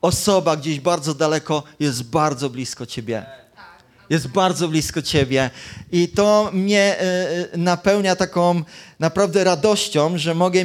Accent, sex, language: native, male, Polish